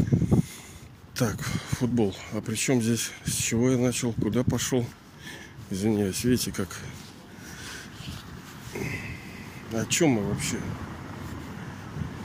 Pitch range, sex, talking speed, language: 115-155 Hz, male, 95 wpm, Russian